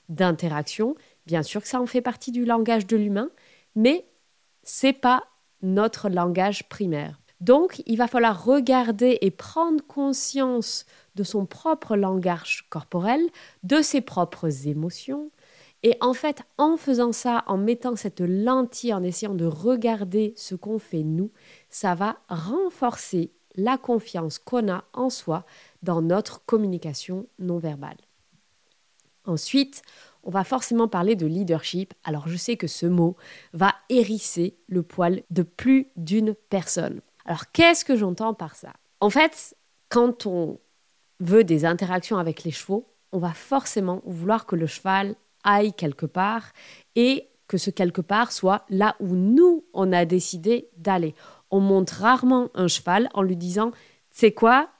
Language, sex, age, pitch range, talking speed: French, female, 20-39, 180-245 Hz, 150 wpm